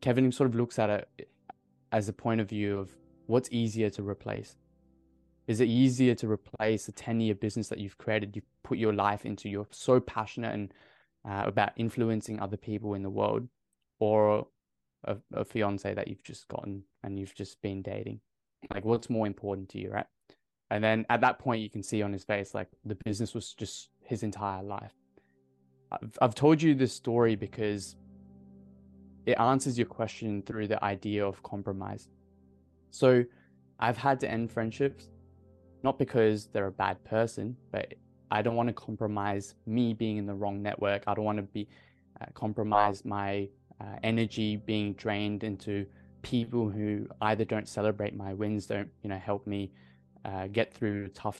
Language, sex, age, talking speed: English, male, 20-39, 180 wpm